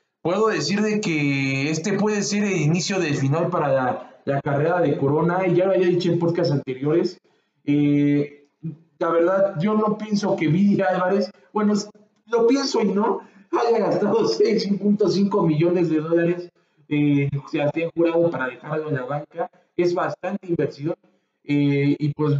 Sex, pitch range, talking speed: male, 145-195 Hz, 165 wpm